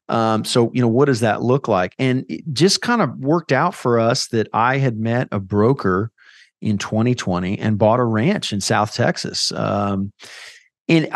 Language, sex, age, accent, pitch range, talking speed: English, male, 40-59, American, 110-145 Hz, 190 wpm